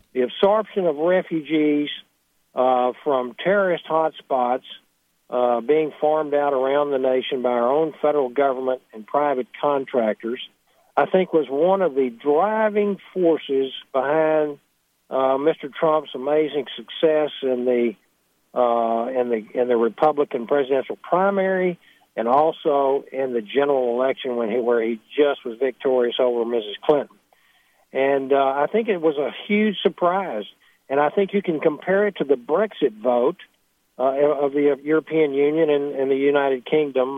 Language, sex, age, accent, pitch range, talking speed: English, male, 60-79, American, 130-165 Hz, 150 wpm